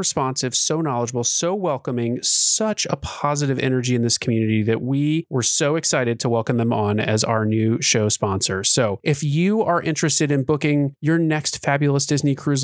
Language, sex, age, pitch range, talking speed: English, male, 30-49, 120-160 Hz, 180 wpm